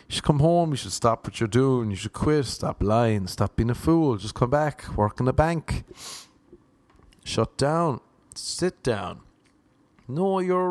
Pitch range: 110-160 Hz